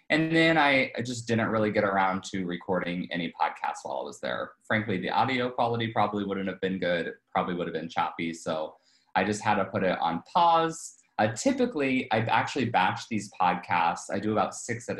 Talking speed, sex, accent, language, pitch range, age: 210 wpm, male, American, English, 95-125 Hz, 20-39